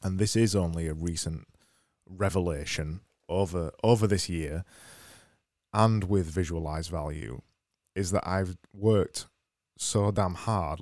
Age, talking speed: 20-39, 120 wpm